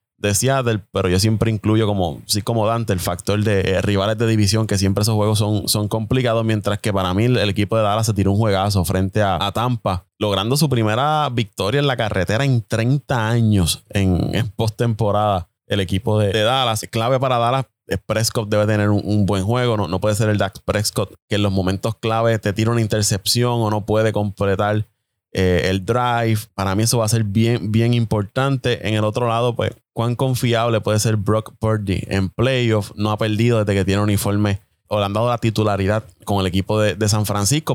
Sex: male